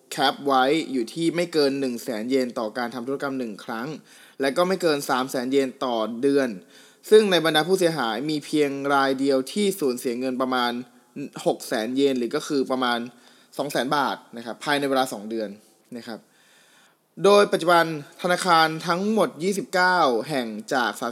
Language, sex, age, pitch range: Thai, male, 20-39, 130-170 Hz